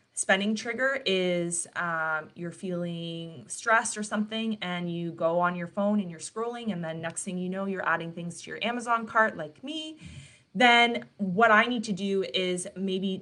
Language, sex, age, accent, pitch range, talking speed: English, female, 20-39, American, 180-220 Hz, 185 wpm